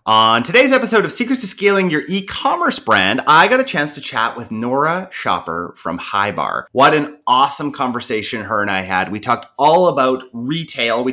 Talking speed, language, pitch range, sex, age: 190 wpm, English, 105-150 Hz, male, 30-49